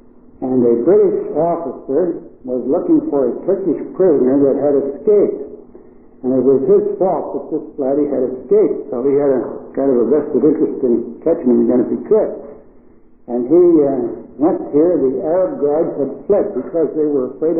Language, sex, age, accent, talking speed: English, male, 60-79, American, 180 wpm